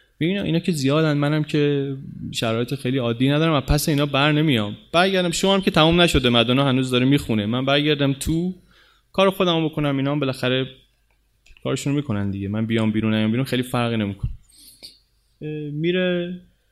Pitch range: 115-150 Hz